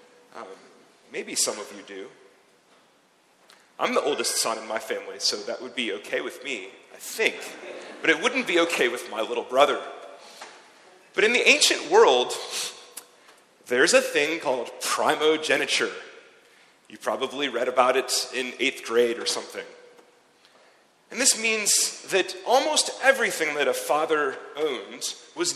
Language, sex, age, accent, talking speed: English, male, 30-49, American, 145 wpm